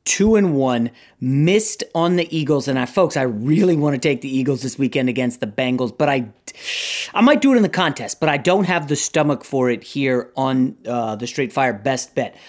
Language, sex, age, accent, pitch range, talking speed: English, male, 30-49, American, 135-170 Hz, 225 wpm